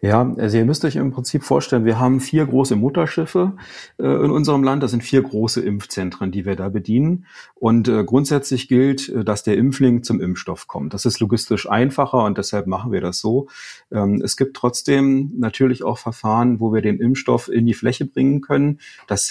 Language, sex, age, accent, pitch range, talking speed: German, male, 40-59, German, 105-125 Hz, 195 wpm